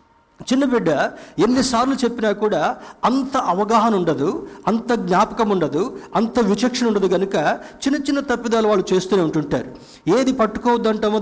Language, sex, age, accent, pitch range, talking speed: Telugu, male, 50-69, native, 160-220 Hz, 125 wpm